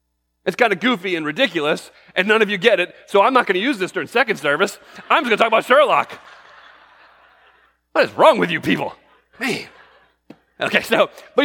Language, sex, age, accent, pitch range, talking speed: English, male, 30-49, American, 130-205 Hz, 205 wpm